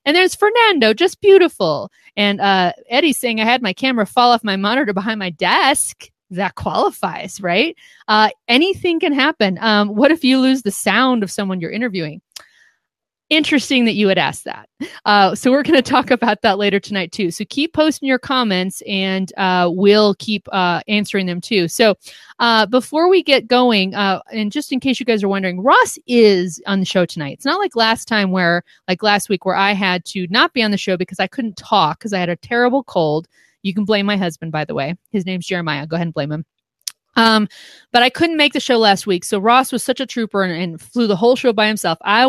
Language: English